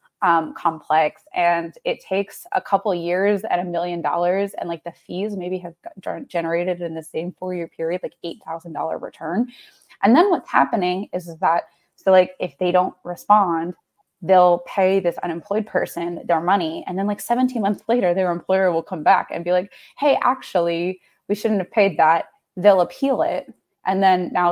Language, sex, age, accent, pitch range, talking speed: English, female, 20-39, American, 170-195 Hz, 185 wpm